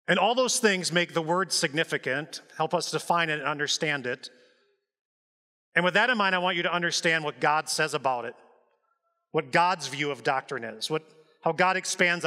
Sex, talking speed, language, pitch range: male, 195 wpm, English, 170-215 Hz